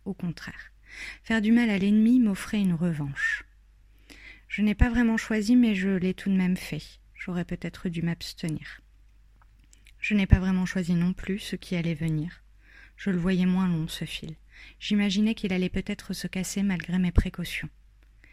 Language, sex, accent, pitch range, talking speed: French, female, French, 175-200 Hz, 175 wpm